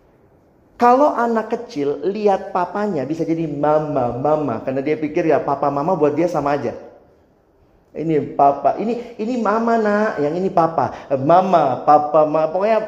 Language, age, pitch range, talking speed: Indonesian, 40-59, 145-225 Hz, 150 wpm